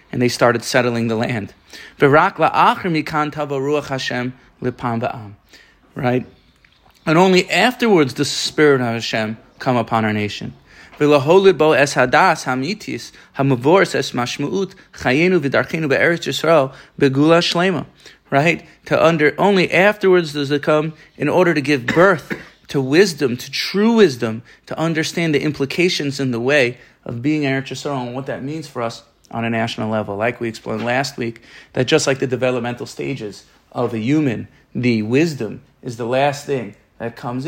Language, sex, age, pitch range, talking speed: English, male, 30-49, 115-150 Hz, 130 wpm